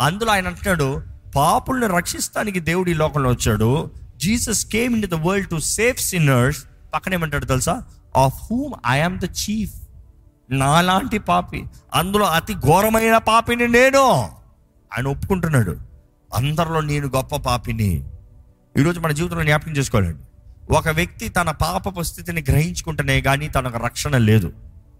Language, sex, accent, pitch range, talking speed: Telugu, male, native, 125-205 Hz, 125 wpm